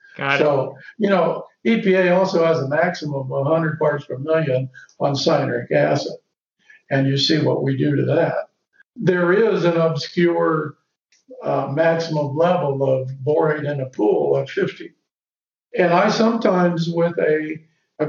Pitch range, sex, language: 155-185 Hz, male, English